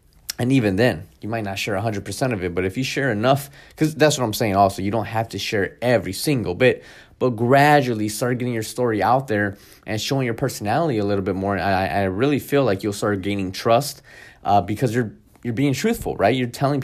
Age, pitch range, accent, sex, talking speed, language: 20-39, 105-135 Hz, American, male, 225 wpm, English